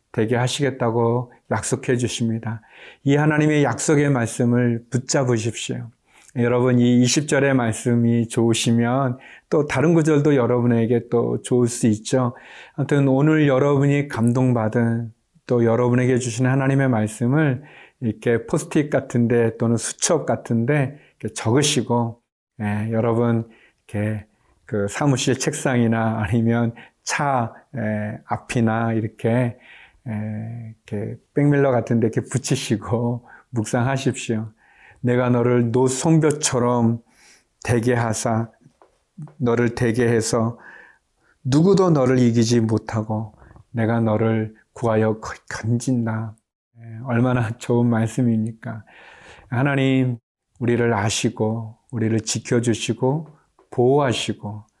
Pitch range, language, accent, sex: 115-130 Hz, Korean, native, male